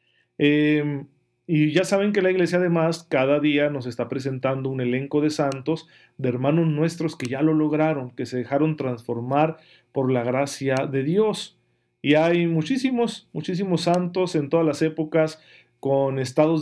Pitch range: 135-160 Hz